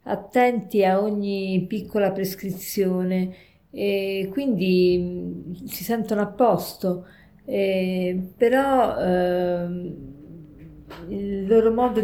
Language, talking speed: Italian, 80 wpm